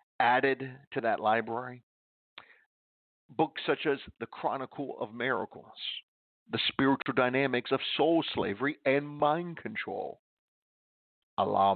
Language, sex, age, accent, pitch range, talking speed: English, male, 50-69, American, 100-125 Hz, 105 wpm